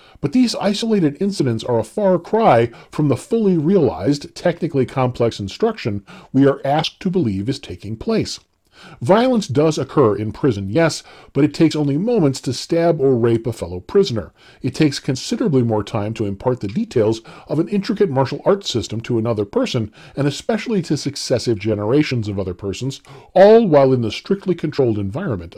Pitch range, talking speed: 110-170 Hz, 175 wpm